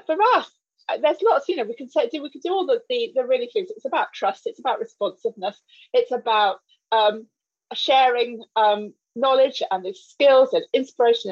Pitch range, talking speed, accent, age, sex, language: 255-415 Hz, 190 wpm, British, 30-49, female, English